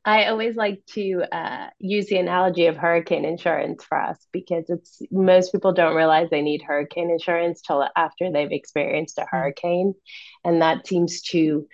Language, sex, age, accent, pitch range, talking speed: English, female, 30-49, American, 155-185 Hz, 170 wpm